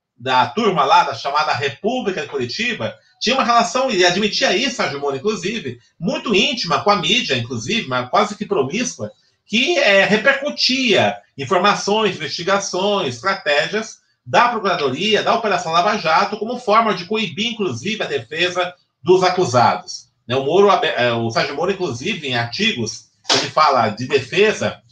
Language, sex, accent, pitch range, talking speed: Portuguese, male, Brazilian, 145-210 Hz, 140 wpm